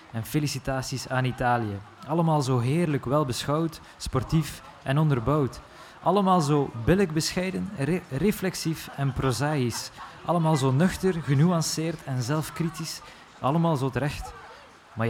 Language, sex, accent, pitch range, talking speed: Dutch, male, Dutch, 130-160 Hz, 115 wpm